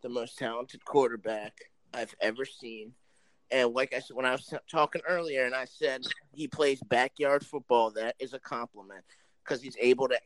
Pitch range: 125-150 Hz